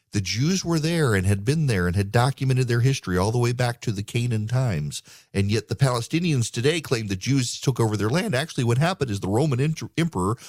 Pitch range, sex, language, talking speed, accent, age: 110-140 Hz, male, English, 230 wpm, American, 40-59